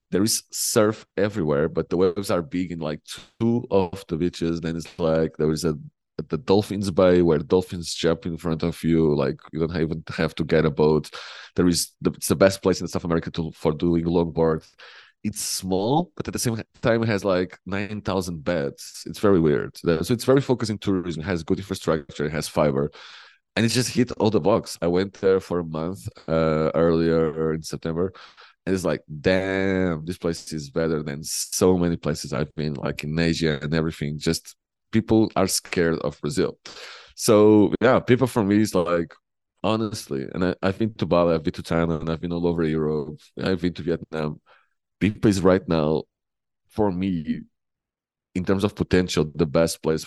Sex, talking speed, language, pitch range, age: male, 200 wpm, English, 80-95 Hz, 30-49